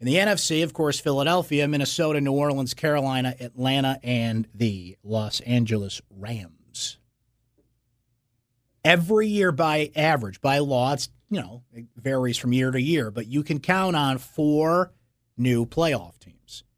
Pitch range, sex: 120-170 Hz, male